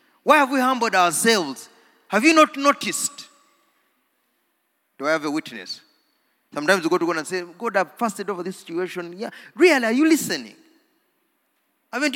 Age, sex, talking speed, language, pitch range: 30-49, male, 165 wpm, English, 200-300 Hz